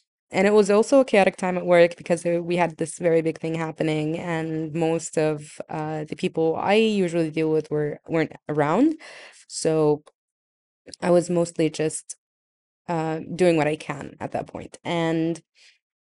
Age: 20-39